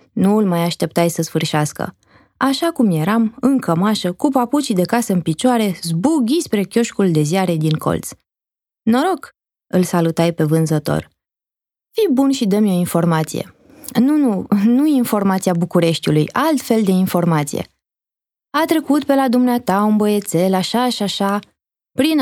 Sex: female